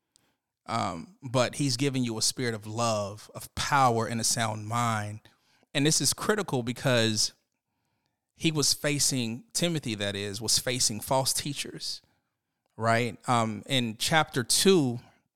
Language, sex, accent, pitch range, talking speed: English, male, American, 115-145 Hz, 135 wpm